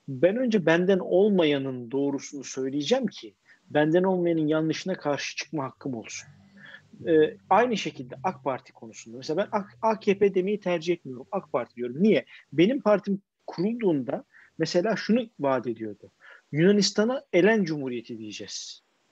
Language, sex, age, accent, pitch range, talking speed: Turkish, male, 50-69, native, 150-210 Hz, 130 wpm